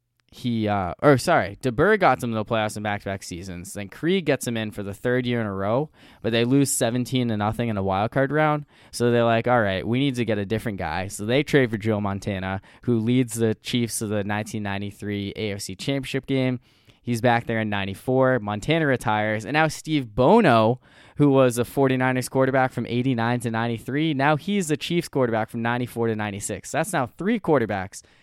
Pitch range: 100-125 Hz